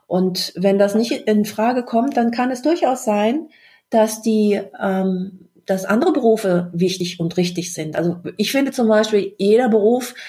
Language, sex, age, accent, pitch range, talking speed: German, female, 50-69, German, 180-225 Hz, 170 wpm